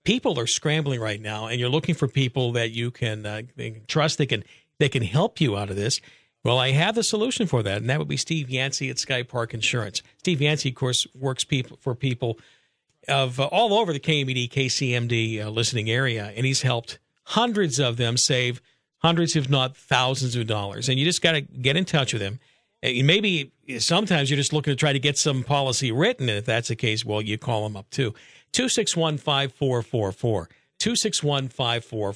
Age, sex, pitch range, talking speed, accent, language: 50-69, male, 120-160 Hz, 220 wpm, American, English